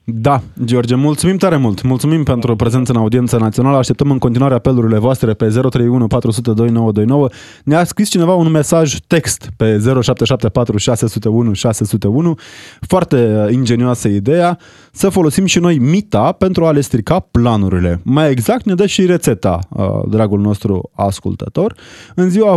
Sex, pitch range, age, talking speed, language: male, 110-165 Hz, 20-39, 140 wpm, Romanian